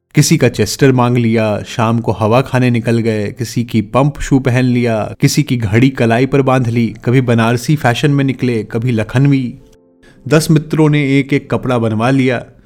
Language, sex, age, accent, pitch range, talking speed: Hindi, male, 30-49, native, 110-140 Hz, 185 wpm